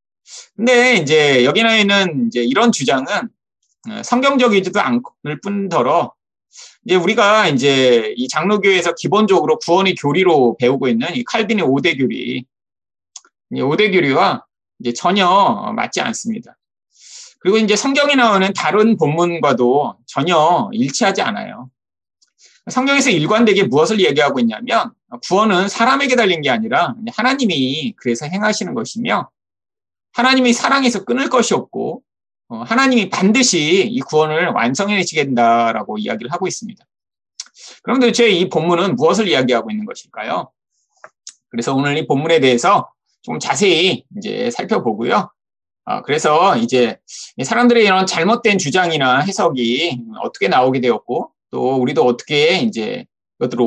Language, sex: Korean, male